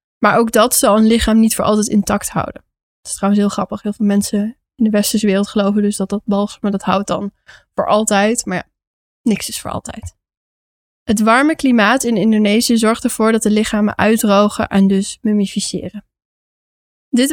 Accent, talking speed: Dutch, 190 wpm